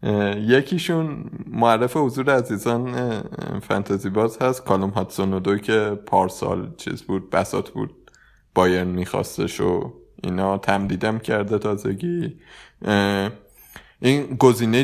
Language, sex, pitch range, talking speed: Persian, male, 100-125 Hz, 100 wpm